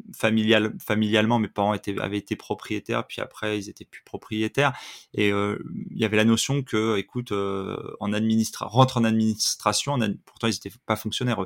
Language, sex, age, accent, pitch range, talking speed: French, male, 30-49, French, 105-125 Hz, 190 wpm